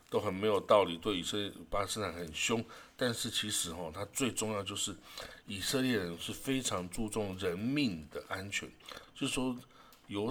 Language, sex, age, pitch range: Chinese, male, 60-79, 85-115 Hz